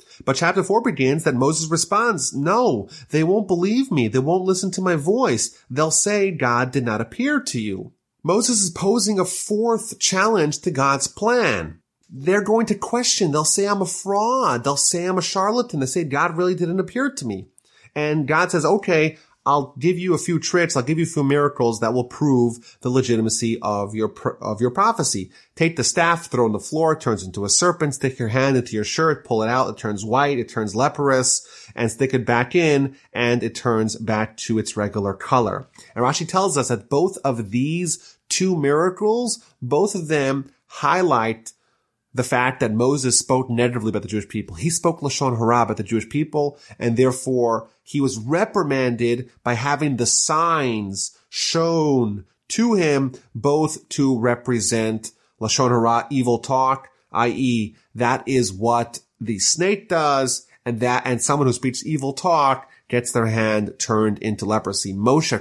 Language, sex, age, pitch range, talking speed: English, male, 30-49, 120-165 Hz, 180 wpm